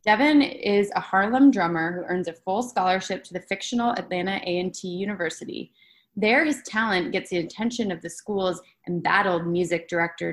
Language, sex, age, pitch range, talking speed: English, female, 20-39, 175-220 Hz, 165 wpm